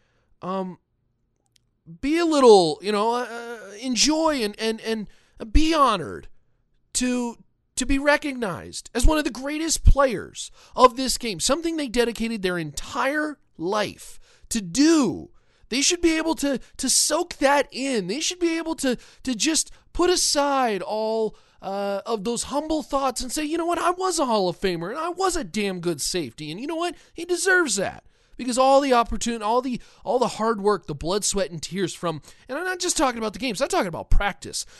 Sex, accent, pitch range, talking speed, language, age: male, American, 185-295 Hz, 190 wpm, English, 30-49